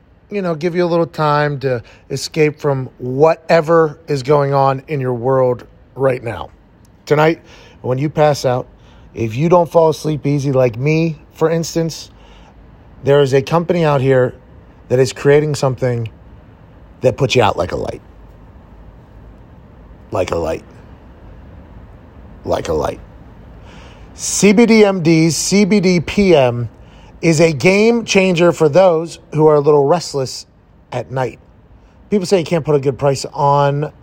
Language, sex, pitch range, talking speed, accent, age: English, male, 135-180 Hz, 145 wpm, American, 30-49